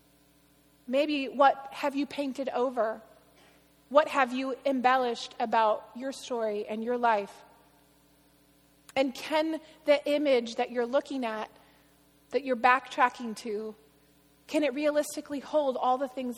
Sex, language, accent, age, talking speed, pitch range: female, English, American, 30-49, 130 wpm, 225-280 Hz